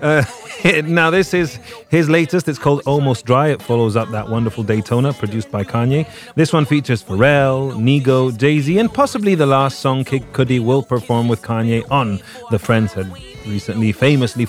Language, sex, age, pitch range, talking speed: English, male, 30-49, 110-145 Hz, 175 wpm